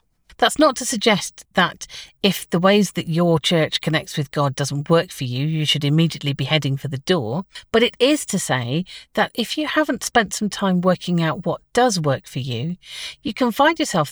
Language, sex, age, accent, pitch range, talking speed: English, female, 50-69, British, 150-210 Hz, 210 wpm